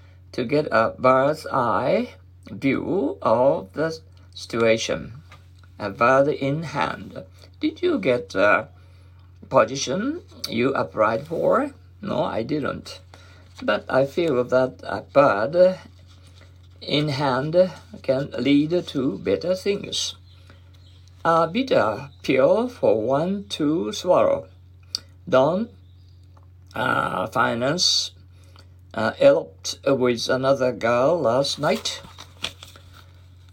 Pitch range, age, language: 90-135 Hz, 50-69, Japanese